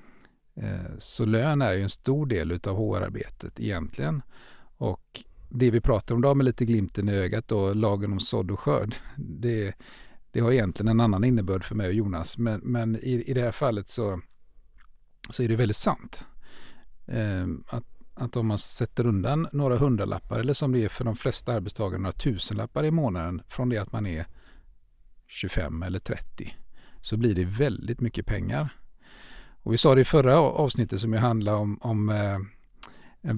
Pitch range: 105-130 Hz